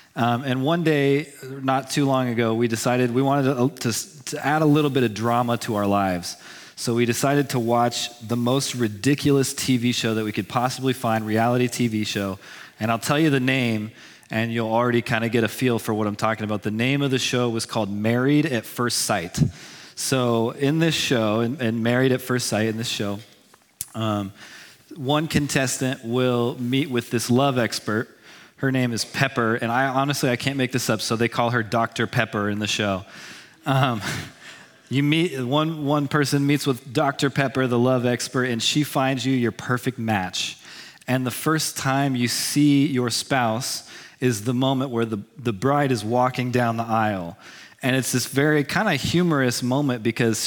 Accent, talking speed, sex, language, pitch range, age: American, 195 wpm, male, English, 115-135 Hz, 30-49